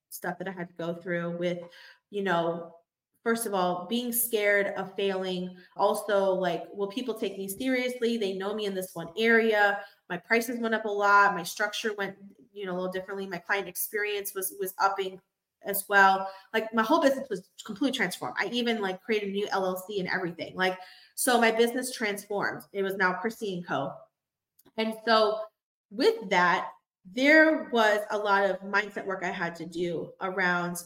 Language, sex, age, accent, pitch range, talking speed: English, female, 20-39, American, 185-225 Hz, 185 wpm